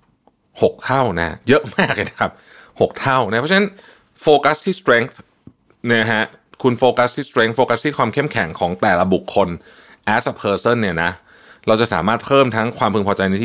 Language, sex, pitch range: Thai, male, 85-125 Hz